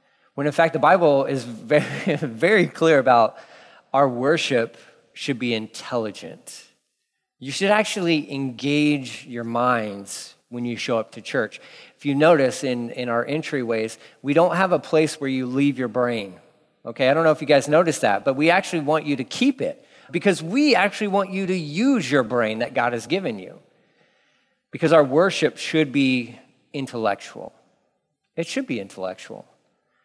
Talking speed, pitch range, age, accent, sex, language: 170 wpm, 130-165 Hz, 40-59, American, male, English